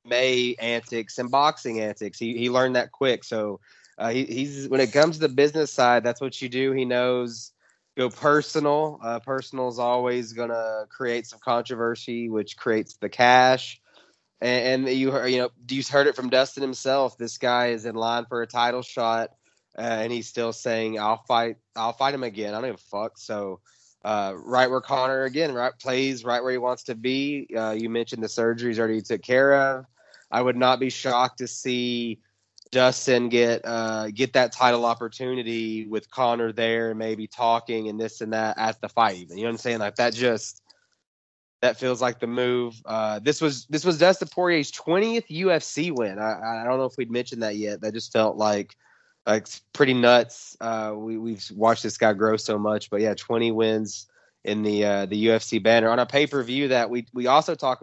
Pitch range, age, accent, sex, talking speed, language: 115-130 Hz, 20-39, American, male, 205 wpm, English